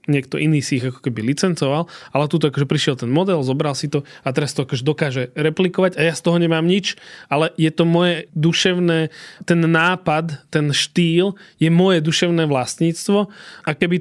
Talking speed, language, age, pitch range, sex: 185 wpm, Slovak, 20-39, 145-175 Hz, male